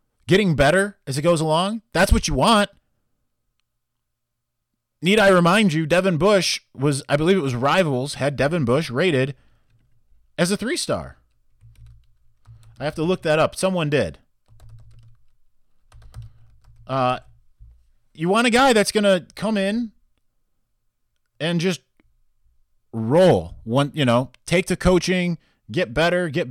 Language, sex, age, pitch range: English, male, 30-49, 110-175 Hz